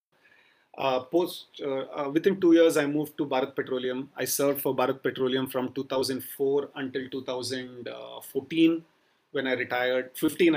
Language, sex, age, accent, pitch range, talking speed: English, male, 30-49, Indian, 125-140 Hz, 135 wpm